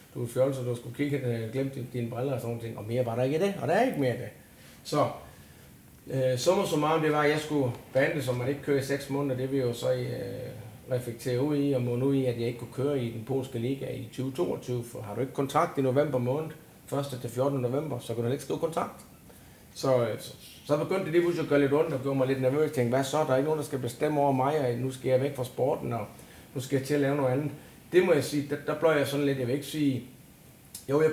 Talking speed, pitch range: 295 wpm, 120-140 Hz